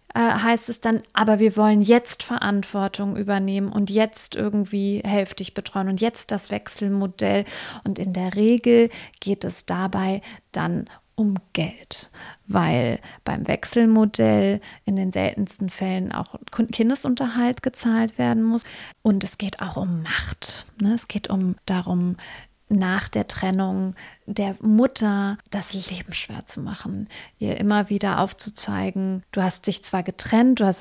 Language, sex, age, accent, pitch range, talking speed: German, female, 30-49, German, 190-225 Hz, 140 wpm